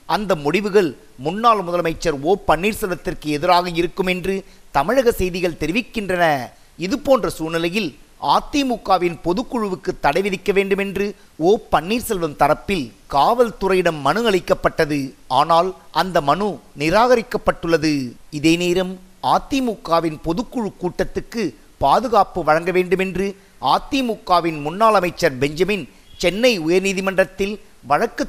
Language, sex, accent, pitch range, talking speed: Tamil, male, native, 170-205 Hz, 95 wpm